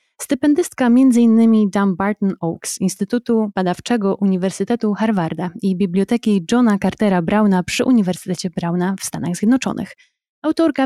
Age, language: 20-39, Polish